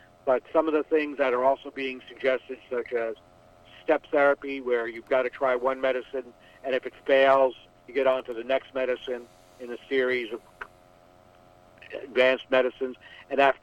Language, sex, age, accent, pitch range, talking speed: English, male, 60-79, American, 125-145 Hz, 175 wpm